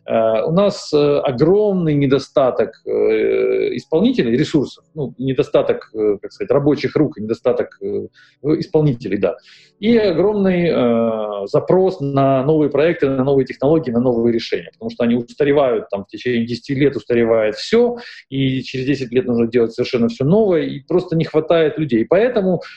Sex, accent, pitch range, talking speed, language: male, native, 120-195 Hz, 130 wpm, Russian